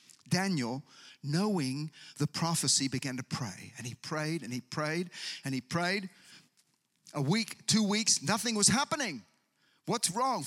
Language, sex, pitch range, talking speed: English, male, 155-215 Hz, 145 wpm